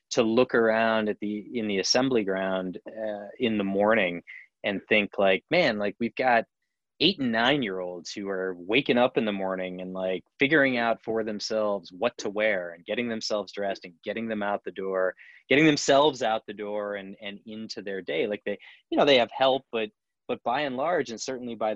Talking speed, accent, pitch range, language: 210 wpm, American, 100-125 Hz, English